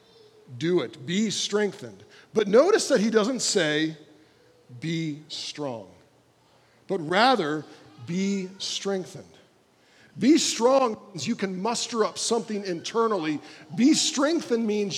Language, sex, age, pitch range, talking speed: English, male, 40-59, 160-235 Hz, 110 wpm